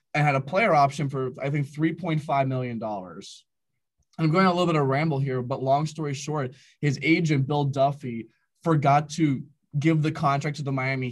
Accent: American